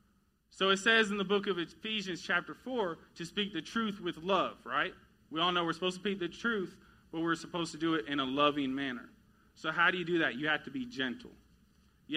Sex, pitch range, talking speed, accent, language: male, 155-200 Hz, 235 wpm, American, English